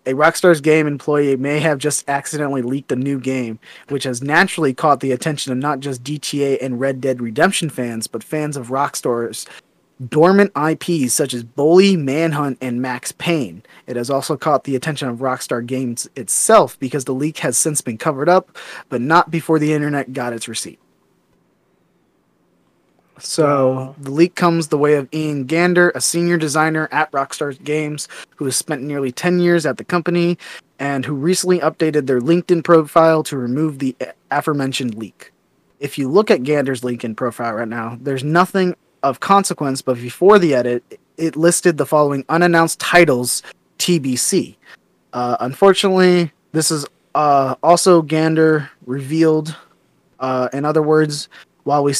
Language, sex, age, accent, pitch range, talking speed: English, male, 20-39, American, 130-165 Hz, 160 wpm